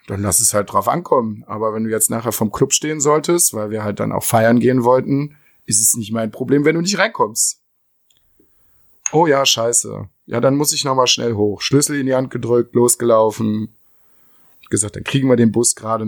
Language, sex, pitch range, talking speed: German, male, 115-150 Hz, 215 wpm